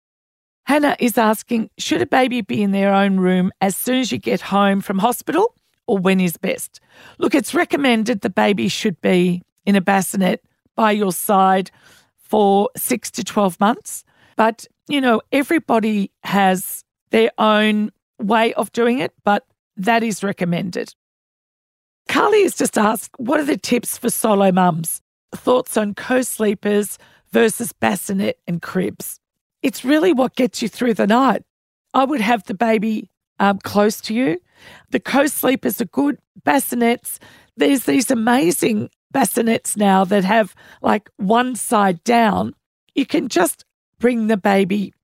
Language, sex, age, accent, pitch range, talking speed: English, female, 40-59, Australian, 195-245 Hz, 150 wpm